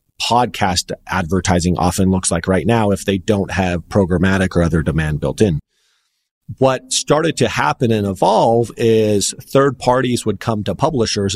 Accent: American